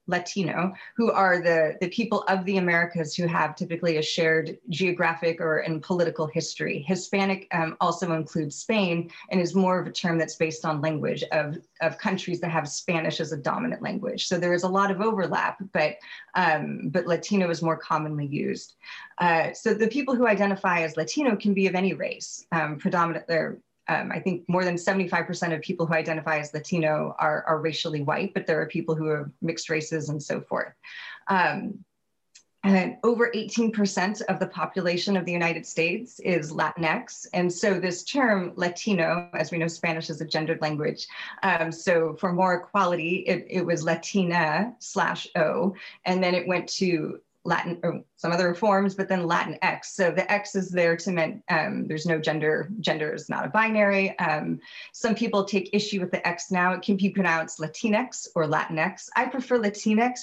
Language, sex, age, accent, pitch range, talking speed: English, female, 30-49, American, 165-195 Hz, 185 wpm